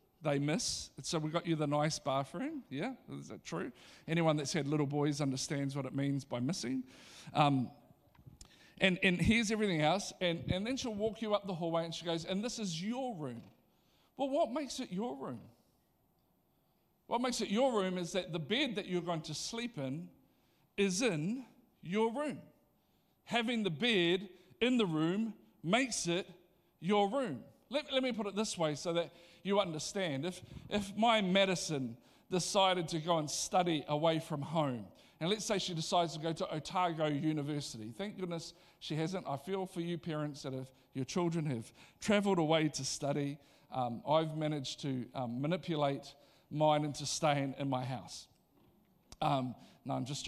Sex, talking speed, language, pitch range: male, 180 wpm, English, 145-200 Hz